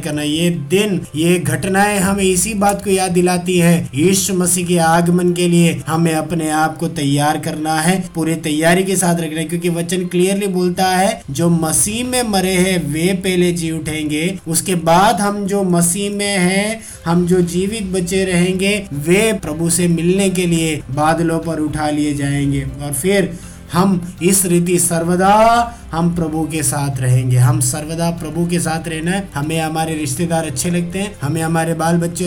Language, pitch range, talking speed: Hindi, 160-185 Hz, 175 wpm